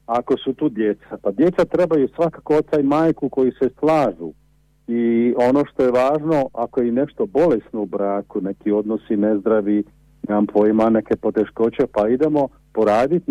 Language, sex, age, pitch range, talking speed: Croatian, male, 50-69, 120-160 Hz, 160 wpm